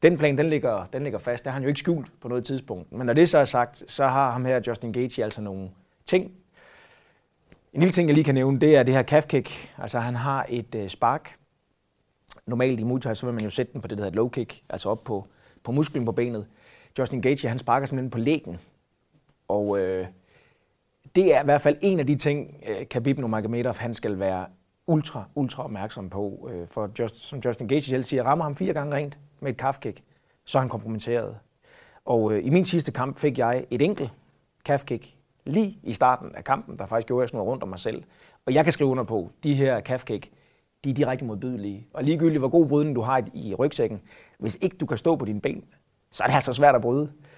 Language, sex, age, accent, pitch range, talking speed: Danish, male, 30-49, native, 115-145 Hz, 230 wpm